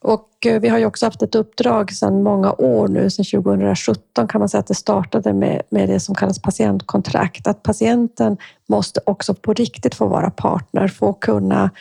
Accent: native